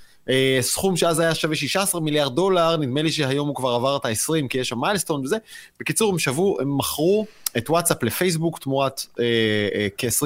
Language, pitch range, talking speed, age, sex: Hebrew, 135-175 Hz, 165 wpm, 30-49, male